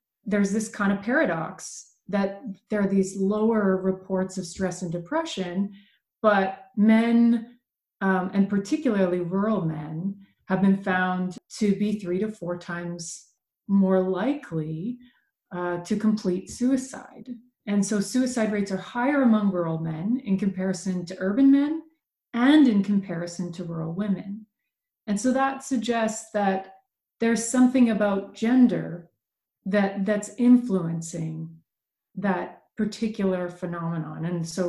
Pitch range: 185-225 Hz